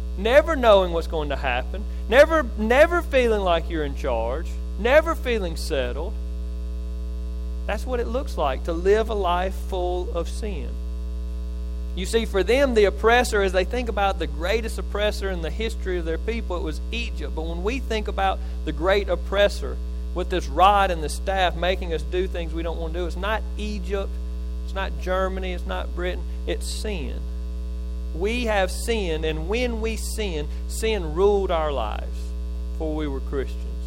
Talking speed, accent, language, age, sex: 175 wpm, American, English, 40-59, male